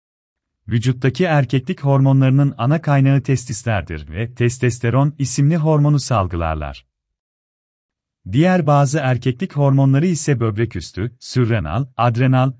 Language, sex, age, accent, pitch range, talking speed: Turkish, male, 40-59, native, 90-145 Hz, 90 wpm